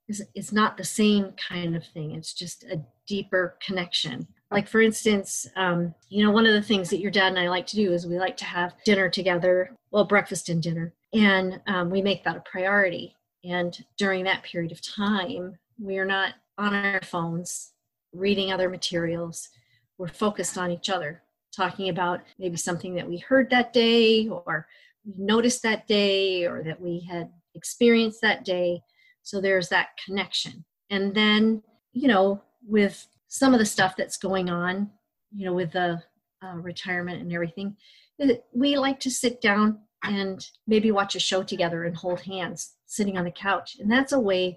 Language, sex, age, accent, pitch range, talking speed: English, female, 40-59, American, 180-215 Hz, 180 wpm